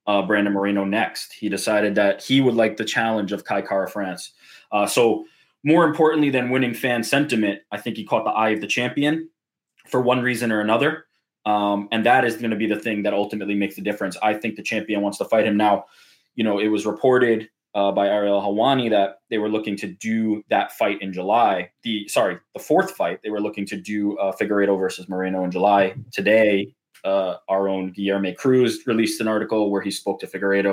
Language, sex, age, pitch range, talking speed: English, male, 20-39, 100-125 Hz, 215 wpm